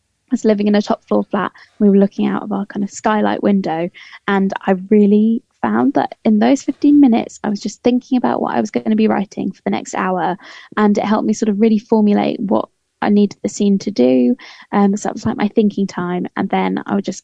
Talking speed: 245 wpm